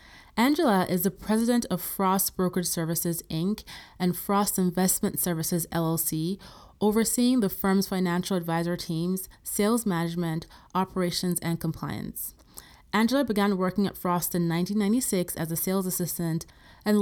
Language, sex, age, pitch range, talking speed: English, female, 30-49, 170-210 Hz, 130 wpm